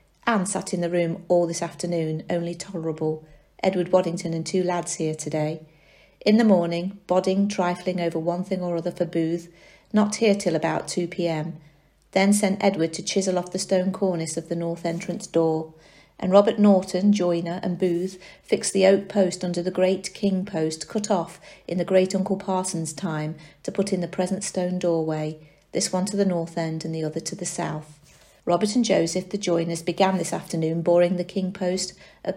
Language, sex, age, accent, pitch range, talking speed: English, female, 40-59, British, 165-190 Hz, 190 wpm